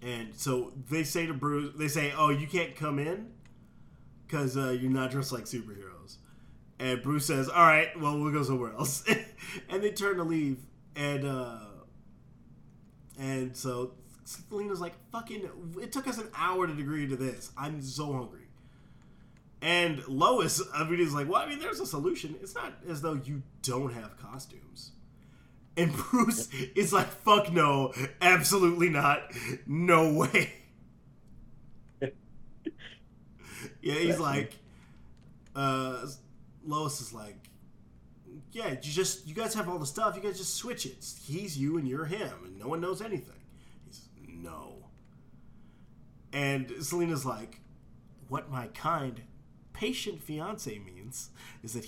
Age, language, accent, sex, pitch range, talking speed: 20-39, English, American, male, 130-175 Hz, 150 wpm